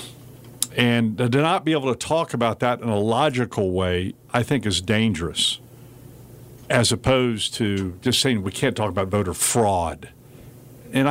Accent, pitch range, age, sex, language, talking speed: American, 110-130 Hz, 50-69, male, English, 155 wpm